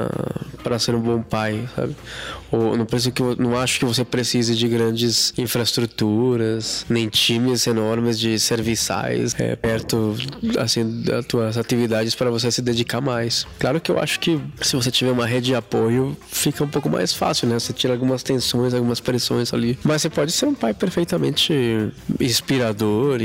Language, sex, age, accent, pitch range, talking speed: Portuguese, male, 20-39, Brazilian, 115-145 Hz, 170 wpm